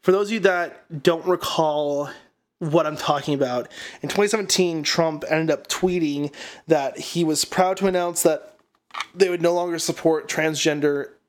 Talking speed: 160 wpm